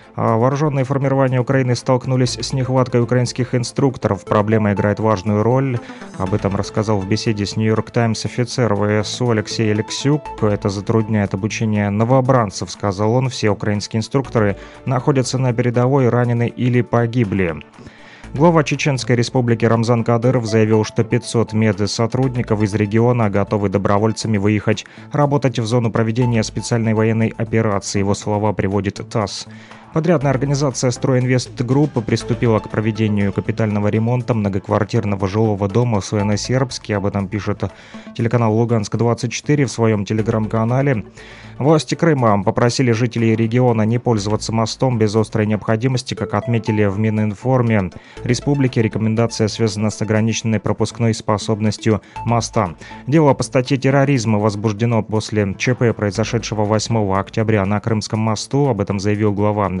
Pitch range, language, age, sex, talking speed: 105-125 Hz, Russian, 30-49, male, 125 wpm